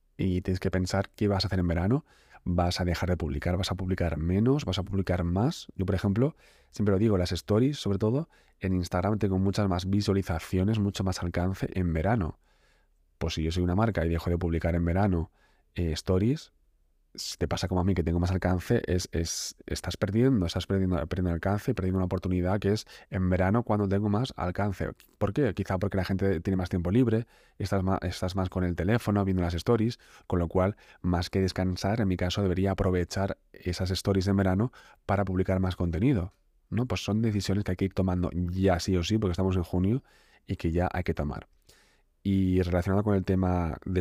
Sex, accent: male, Spanish